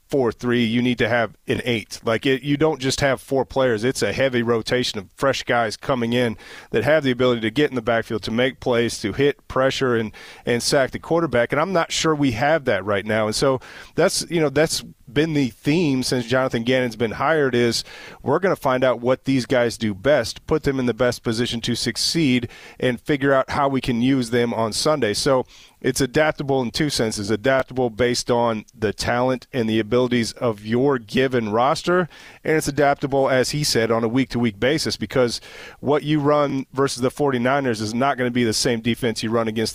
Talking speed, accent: 215 wpm, American